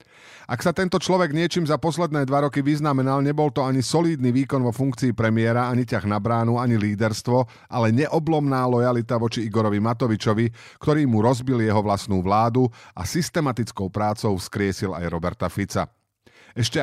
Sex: male